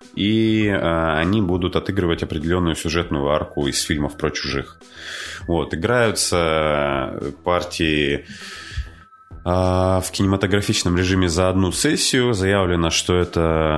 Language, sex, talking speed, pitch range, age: Russian, male, 95 wpm, 80-95 Hz, 20-39